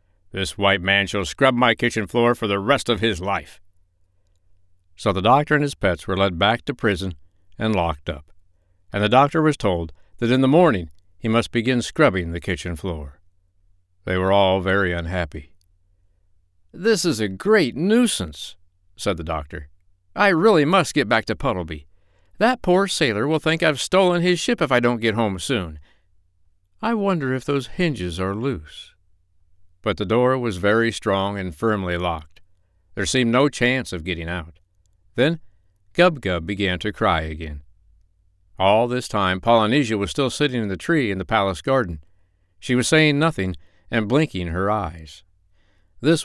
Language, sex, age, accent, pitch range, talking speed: English, male, 60-79, American, 90-120 Hz, 170 wpm